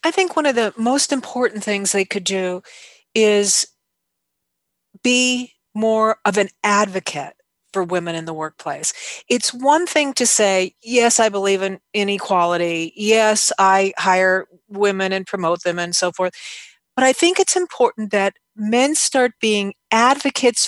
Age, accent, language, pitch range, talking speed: 40-59, American, English, 195-255 Hz, 150 wpm